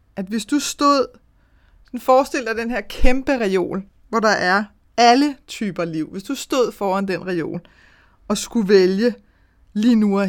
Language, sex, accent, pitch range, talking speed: Danish, female, native, 185-235 Hz, 165 wpm